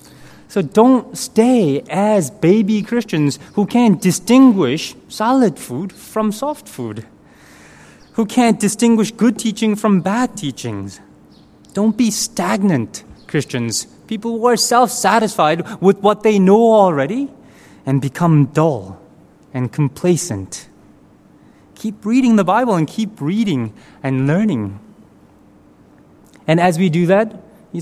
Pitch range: 150-220 Hz